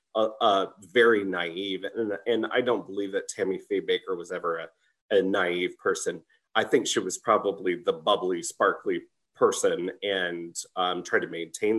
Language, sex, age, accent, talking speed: English, male, 30-49, American, 175 wpm